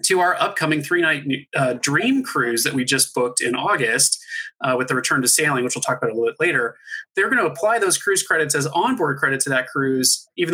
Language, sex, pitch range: English, male, 135-170 Hz